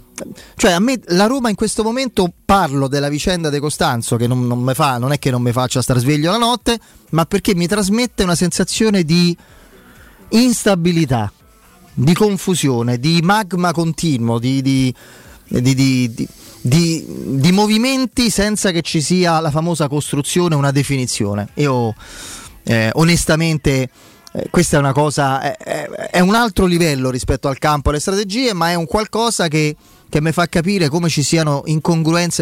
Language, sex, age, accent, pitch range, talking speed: Italian, male, 30-49, native, 135-175 Hz, 165 wpm